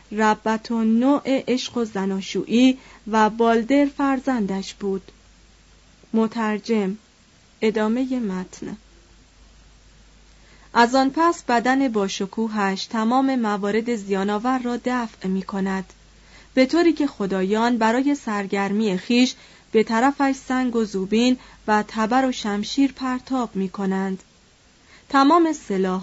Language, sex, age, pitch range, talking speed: Persian, female, 30-49, 200-260 Hz, 110 wpm